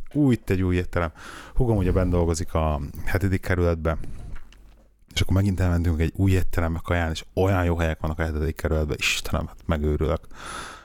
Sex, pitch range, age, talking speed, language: male, 80-100 Hz, 30-49, 185 wpm, Hungarian